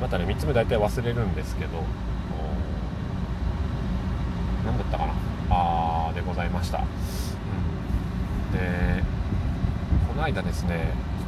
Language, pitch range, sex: Japanese, 80-95 Hz, male